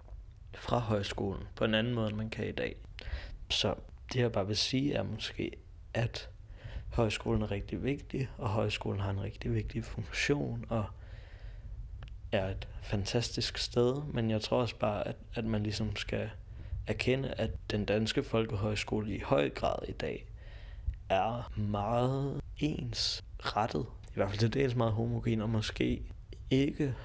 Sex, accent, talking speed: male, native, 155 wpm